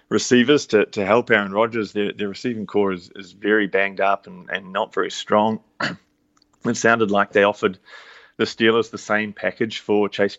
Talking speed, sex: 185 wpm, male